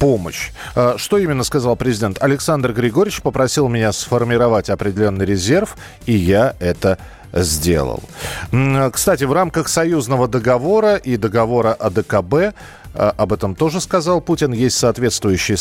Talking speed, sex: 120 wpm, male